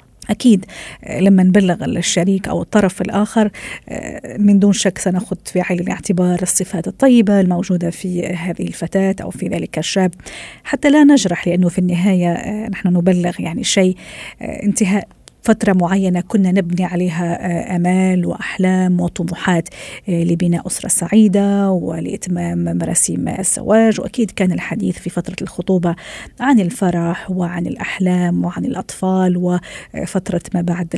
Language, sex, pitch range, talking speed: Arabic, female, 175-205 Hz, 125 wpm